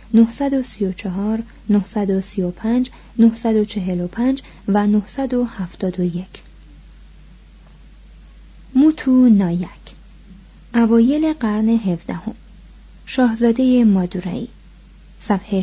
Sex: female